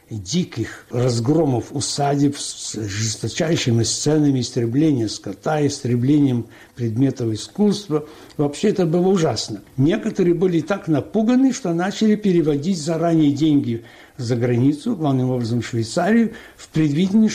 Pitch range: 125-165 Hz